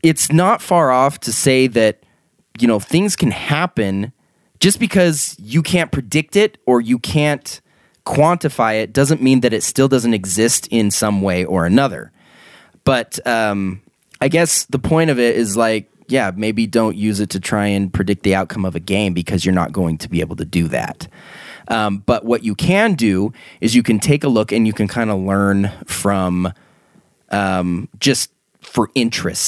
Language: English